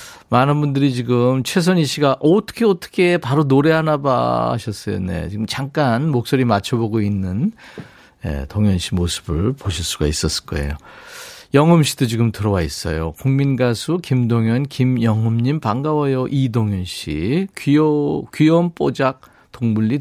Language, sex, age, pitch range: Korean, male, 40-59, 110-155 Hz